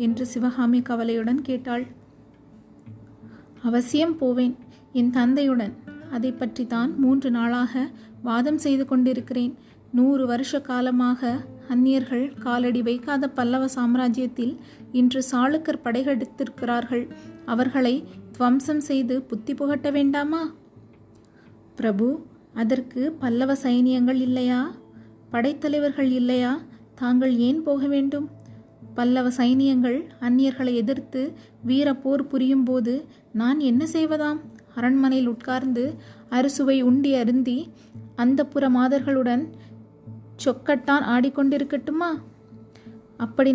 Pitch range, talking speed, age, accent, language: 245-270 Hz, 90 wpm, 30-49, native, Tamil